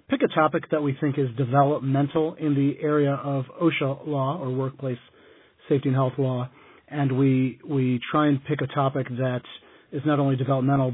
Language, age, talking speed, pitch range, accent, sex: English, 40-59, 180 wpm, 130-145 Hz, American, male